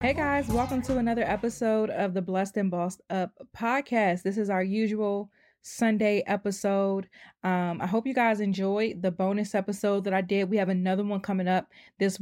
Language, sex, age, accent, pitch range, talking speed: English, female, 20-39, American, 180-215 Hz, 185 wpm